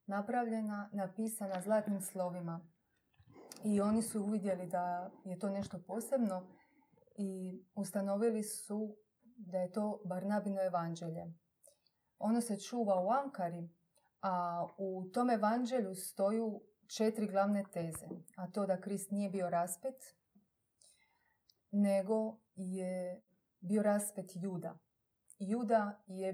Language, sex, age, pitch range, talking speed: Croatian, female, 30-49, 180-210 Hz, 110 wpm